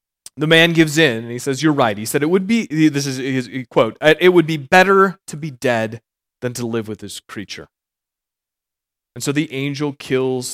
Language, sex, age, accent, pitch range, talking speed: English, male, 30-49, American, 120-170 Hz, 205 wpm